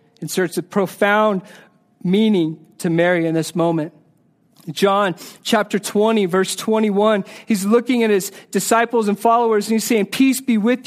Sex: male